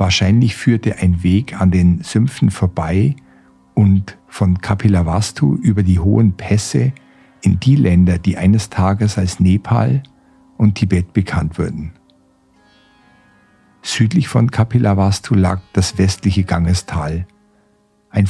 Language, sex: German, male